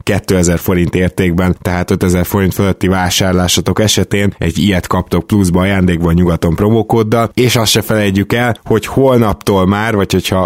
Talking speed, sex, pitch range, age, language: 150 wpm, male, 90-105 Hz, 20-39, Hungarian